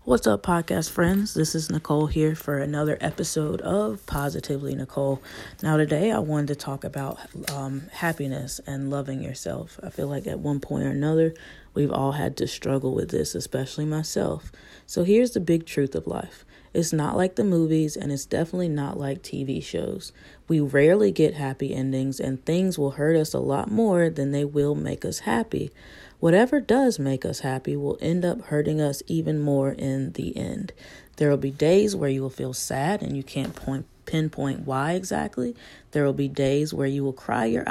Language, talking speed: English, 190 wpm